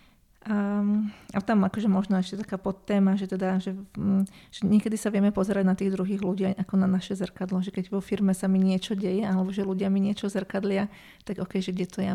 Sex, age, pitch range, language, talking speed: female, 30-49, 190-205 Hz, Slovak, 215 wpm